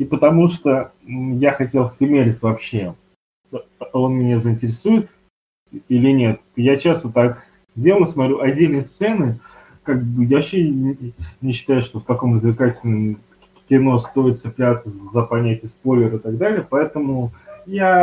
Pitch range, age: 120-150 Hz, 20-39